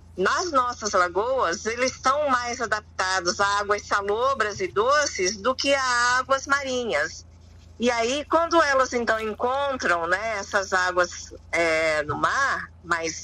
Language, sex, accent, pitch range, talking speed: Portuguese, female, Brazilian, 185-260 Hz, 135 wpm